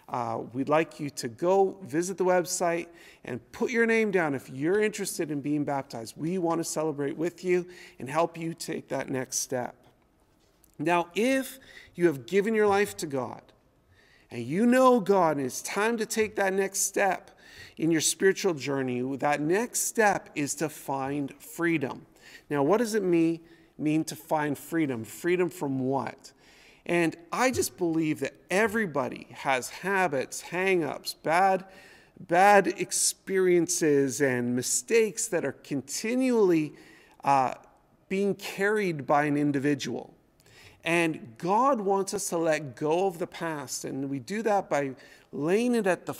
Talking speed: 155 wpm